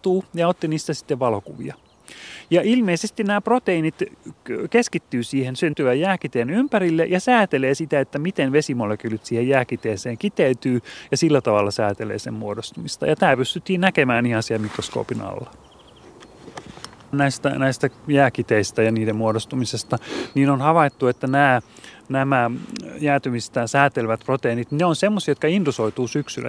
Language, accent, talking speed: Finnish, native, 130 wpm